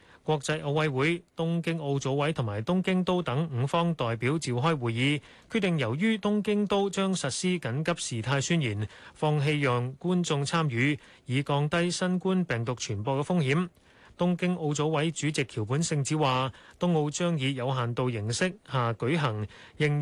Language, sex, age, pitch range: Chinese, male, 30-49, 130-175 Hz